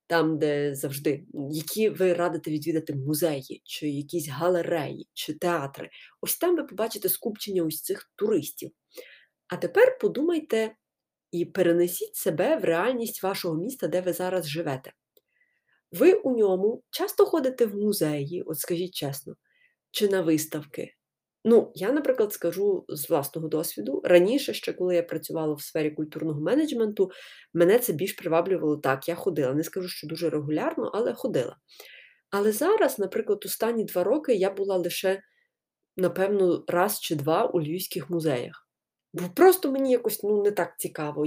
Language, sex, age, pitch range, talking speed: Ukrainian, female, 30-49, 165-240 Hz, 150 wpm